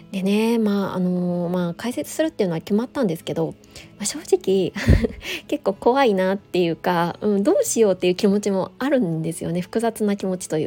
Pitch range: 175-235 Hz